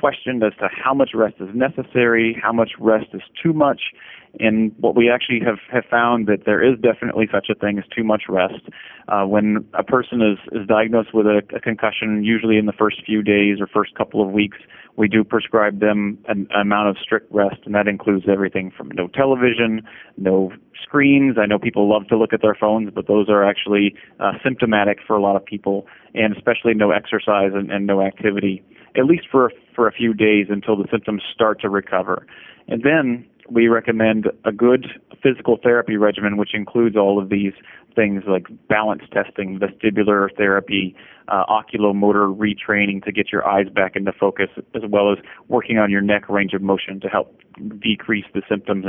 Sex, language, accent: male, English, American